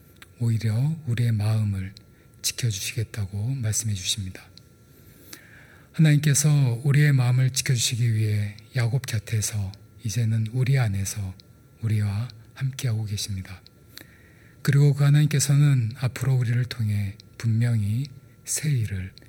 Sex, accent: male, native